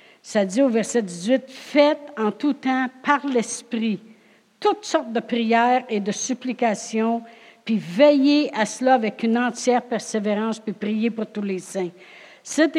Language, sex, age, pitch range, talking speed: French, female, 60-79, 225-260 Hz, 155 wpm